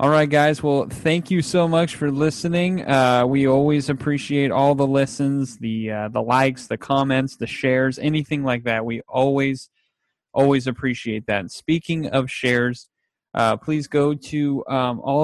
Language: English